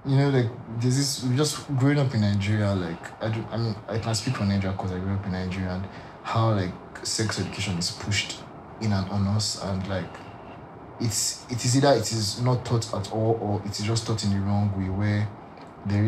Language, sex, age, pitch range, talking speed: English, male, 20-39, 105-135 Hz, 220 wpm